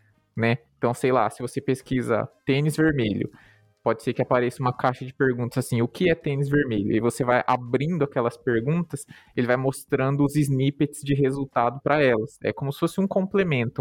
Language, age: Portuguese, 20-39